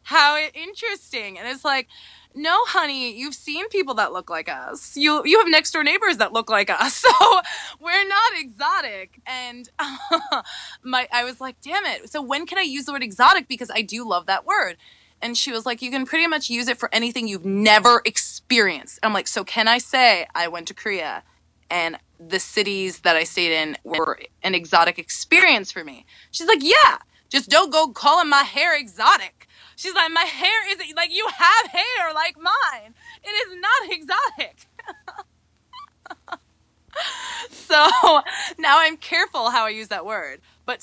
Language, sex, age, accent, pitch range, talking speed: English, female, 20-39, American, 215-335 Hz, 180 wpm